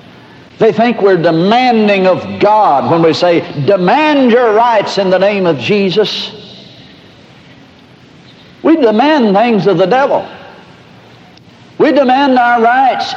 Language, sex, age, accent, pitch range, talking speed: English, male, 60-79, American, 155-230 Hz, 125 wpm